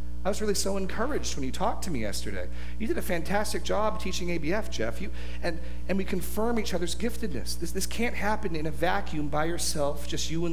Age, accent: 40-59, American